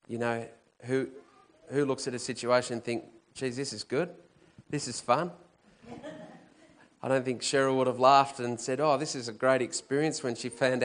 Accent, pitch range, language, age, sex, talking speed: Australian, 115-135 Hz, English, 30-49, male, 195 wpm